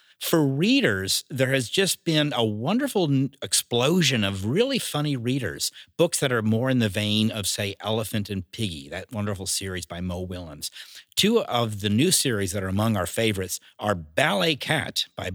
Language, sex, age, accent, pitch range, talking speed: English, male, 50-69, American, 100-135 Hz, 175 wpm